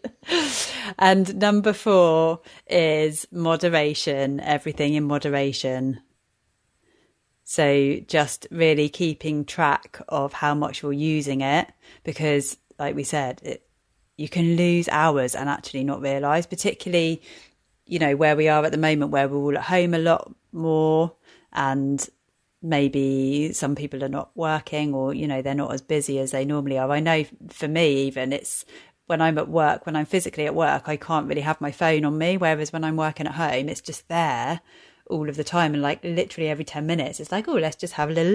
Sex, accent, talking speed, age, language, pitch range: female, British, 180 wpm, 30-49, English, 140-165 Hz